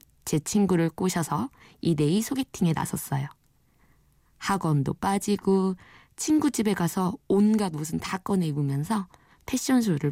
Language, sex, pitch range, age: Korean, female, 155-215 Hz, 20-39